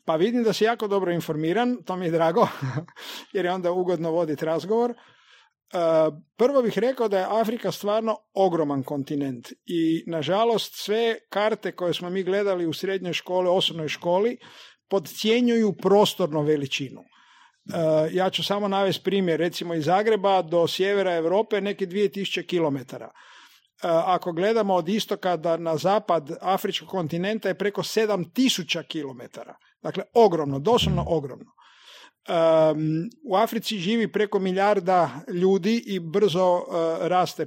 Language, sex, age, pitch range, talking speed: Croatian, male, 50-69, 165-210 Hz, 135 wpm